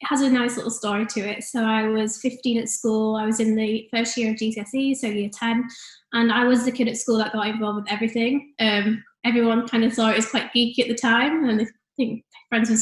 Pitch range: 220-245 Hz